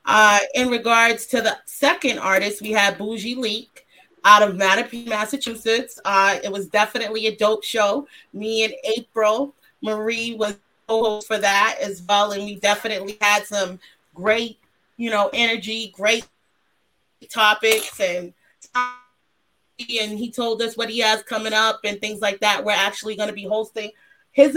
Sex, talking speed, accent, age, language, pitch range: female, 155 wpm, American, 30-49, English, 205-235 Hz